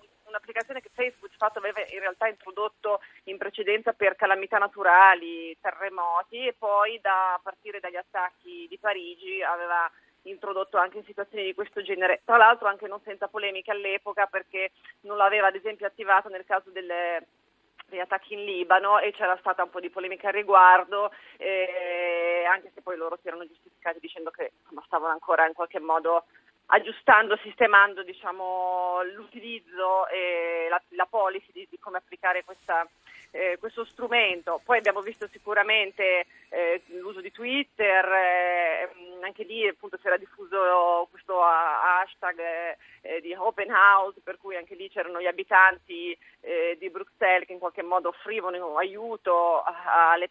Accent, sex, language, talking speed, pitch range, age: native, female, Italian, 155 wpm, 180-210 Hz, 30-49